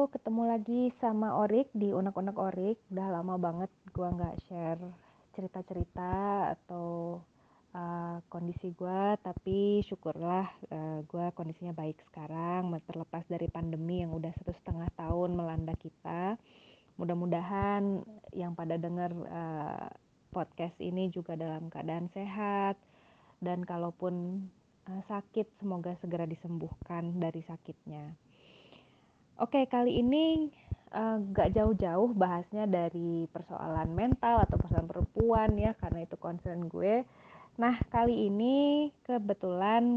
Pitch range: 170-205 Hz